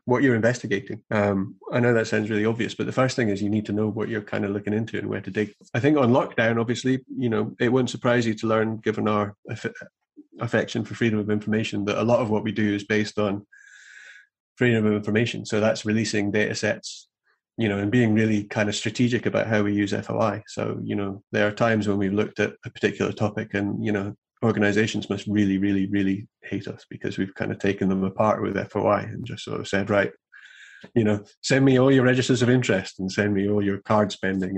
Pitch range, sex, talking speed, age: 100-115 Hz, male, 235 wpm, 30-49